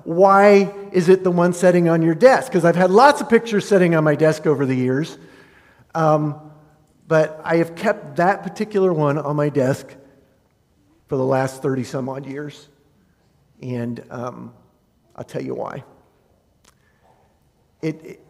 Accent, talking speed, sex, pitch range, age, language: American, 155 wpm, male, 120-155 Hz, 50-69, English